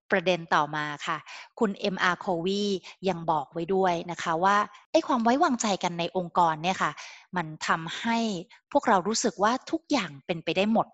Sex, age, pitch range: female, 20-39, 175-235 Hz